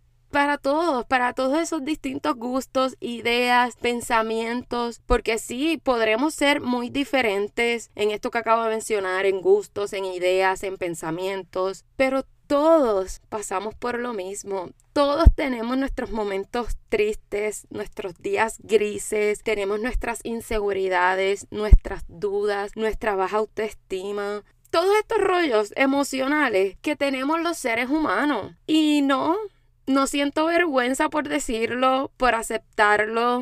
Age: 10-29